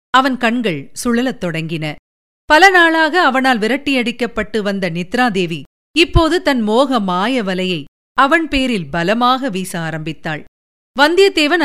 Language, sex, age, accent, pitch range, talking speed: Tamil, female, 50-69, native, 190-265 Hz, 110 wpm